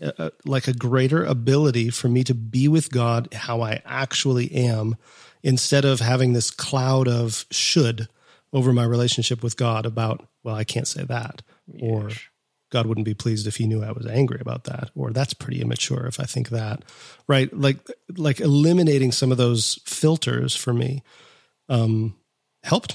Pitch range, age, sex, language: 120-135 Hz, 40-59, male, English